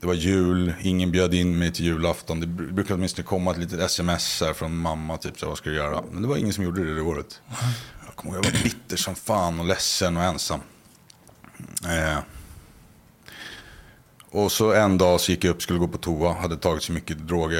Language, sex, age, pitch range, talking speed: Swedish, male, 30-49, 80-95 Hz, 220 wpm